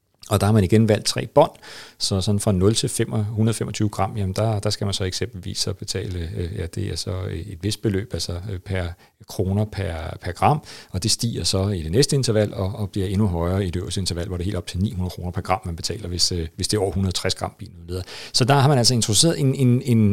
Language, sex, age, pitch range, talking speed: Danish, male, 40-59, 95-125 Hz, 245 wpm